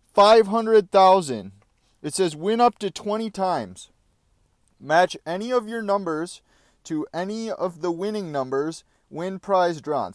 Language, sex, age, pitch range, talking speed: English, male, 30-49, 165-235 Hz, 130 wpm